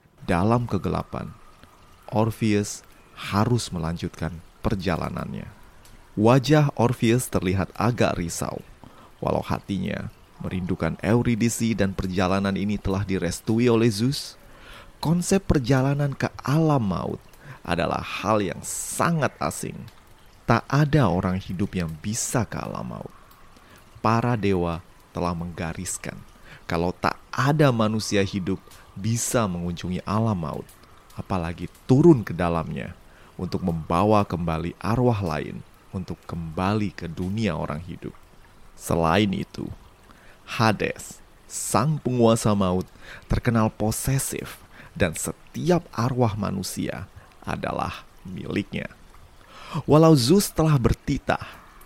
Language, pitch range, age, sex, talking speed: Indonesian, 90-120 Hz, 30-49, male, 100 wpm